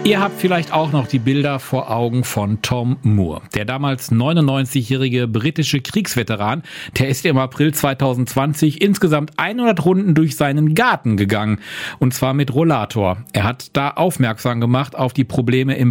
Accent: German